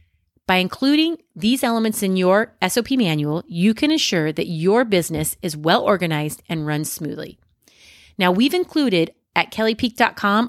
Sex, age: female, 30-49